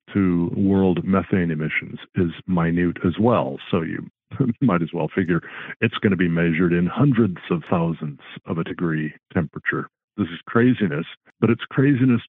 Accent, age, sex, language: American, 50-69, male, English